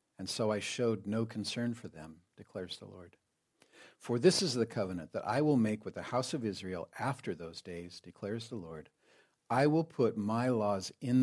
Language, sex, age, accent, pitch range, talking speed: English, male, 50-69, American, 95-120 Hz, 200 wpm